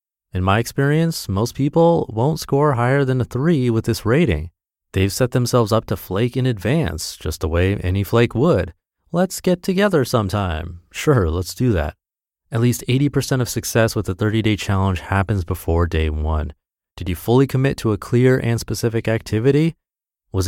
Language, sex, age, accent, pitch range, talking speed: English, male, 30-49, American, 85-120 Hz, 175 wpm